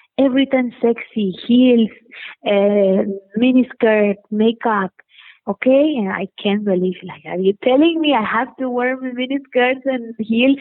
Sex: female